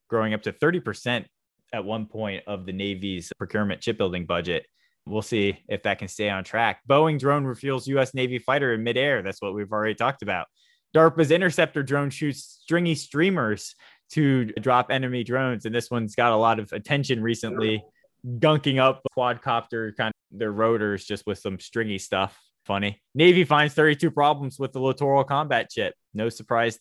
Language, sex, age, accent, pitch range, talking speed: English, male, 20-39, American, 105-140 Hz, 175 wpm